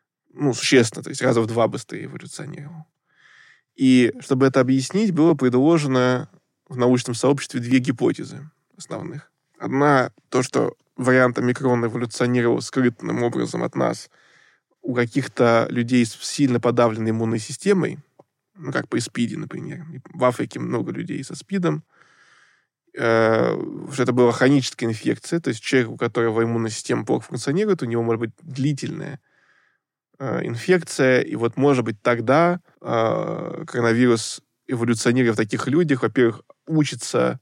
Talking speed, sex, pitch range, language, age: 135 wpm, male, 120-155 Hz, Russian, 20-39